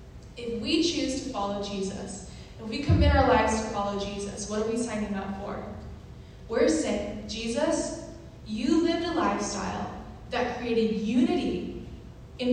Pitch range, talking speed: 205-245 Hz, 150 wpm